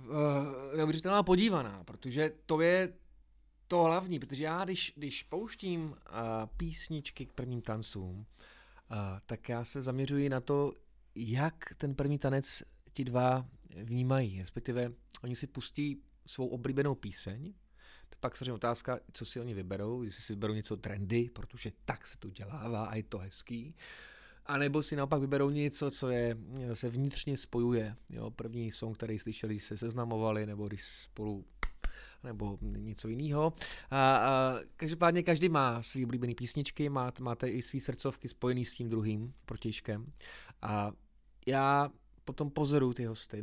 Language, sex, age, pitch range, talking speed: Czech, male, 30-49, 110-140 Hz, 145 wpm